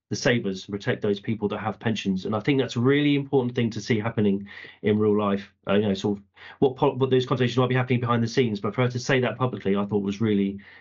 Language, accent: English, British